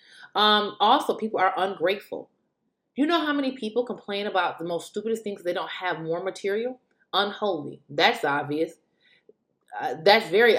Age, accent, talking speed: 30-49, American, 155 wpm